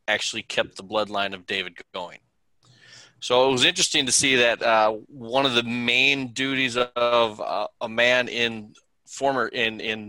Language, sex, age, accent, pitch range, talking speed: English, male, 20-39, American, 110-125 Hz, 165 wpm